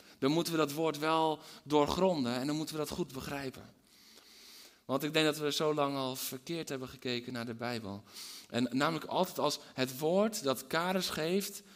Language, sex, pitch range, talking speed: Dutch, male, 125-170 Hz, 190 wpm